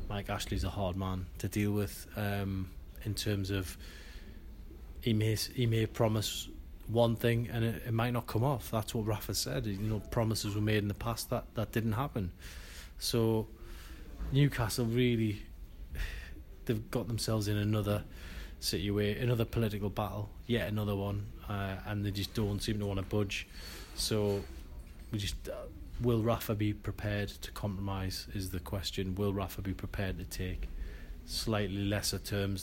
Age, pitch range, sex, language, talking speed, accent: 20-39, 95-110 Hz, male, English, 165 wpm, British